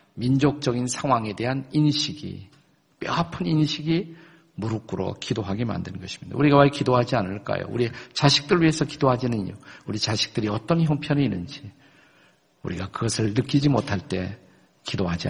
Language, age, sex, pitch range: Korean, 50-69, male, 115-150 Hz